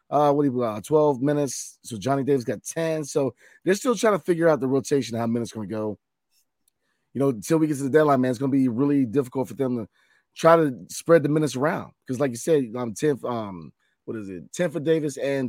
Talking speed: 260 wpm